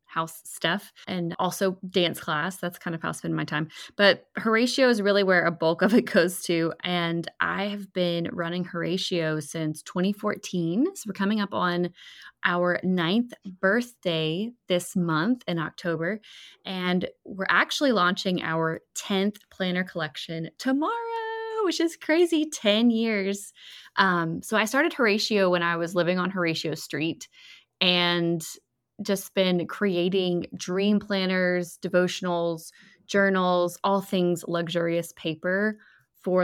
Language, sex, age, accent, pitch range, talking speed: English, female, 20-39, American, 170-205 Hz, 140 wpm